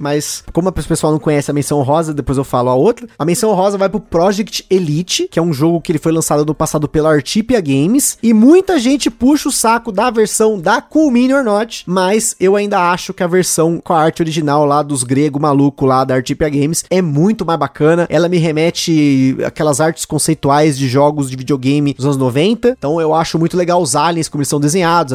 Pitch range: 150-205 Hz